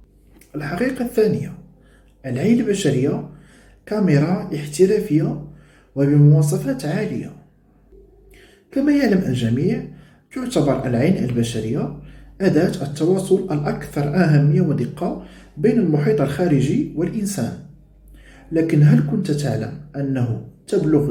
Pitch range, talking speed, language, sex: 140-195 Hz, 80 wpm, Arabic, male